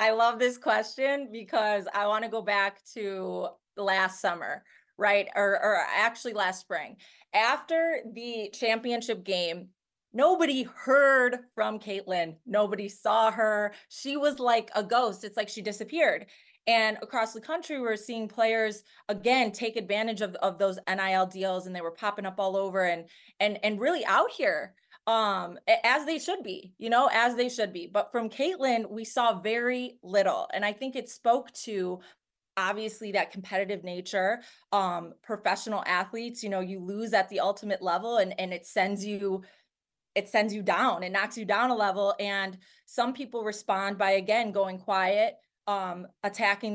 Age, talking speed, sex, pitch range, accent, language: 20-39, 170 wpm, female, 195-230 Hz, American, English